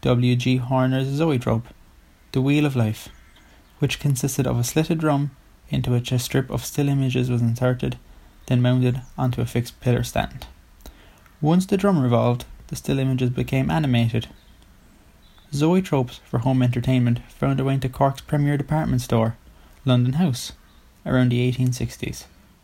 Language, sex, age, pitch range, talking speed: English, male, 20-39, 120-135 Hz, 145 wpm